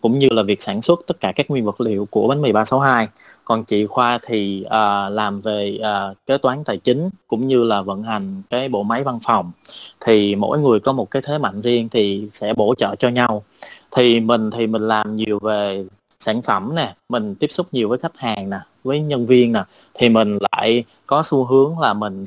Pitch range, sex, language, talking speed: 105-135 Hz, male, Vietnamese, 220 wpm